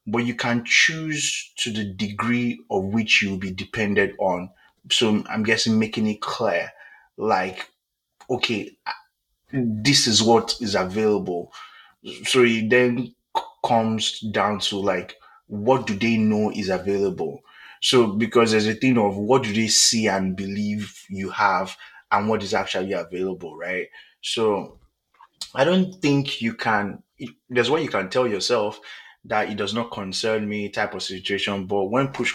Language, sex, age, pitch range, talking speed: English, male, 30-49, 95-115 Hz, 155 wpm